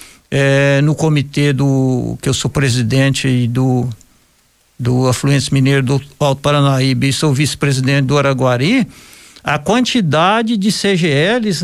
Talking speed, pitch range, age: 125 wpm, 135-180 Hz, 60-79